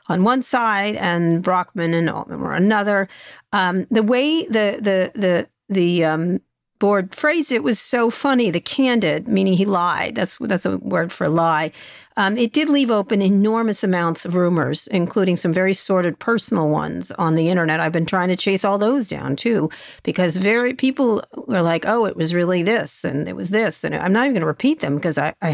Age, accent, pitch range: 50-69, American, 170-220 Hz